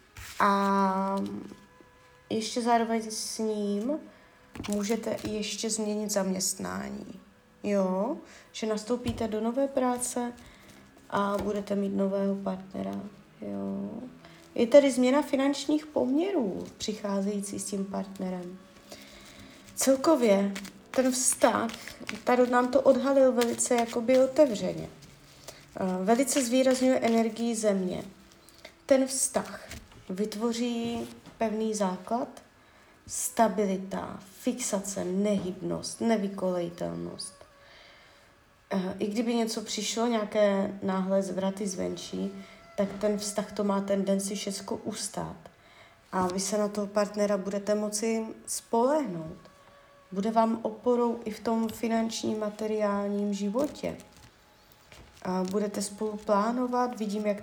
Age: 20-39